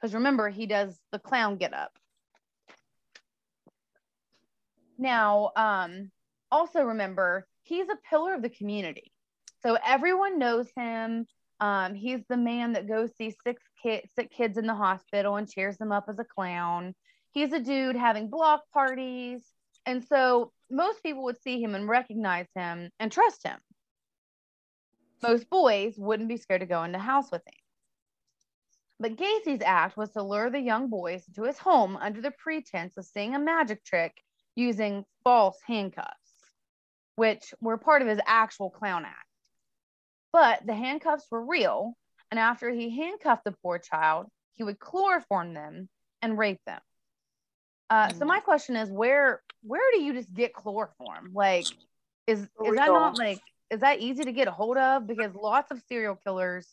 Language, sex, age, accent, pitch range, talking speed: English, female, 30-49, American, 205-265 Hz, 165 wpm